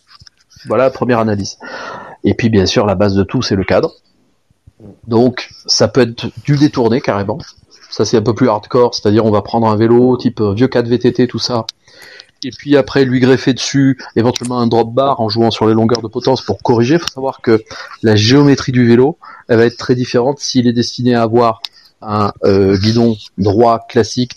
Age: 30-49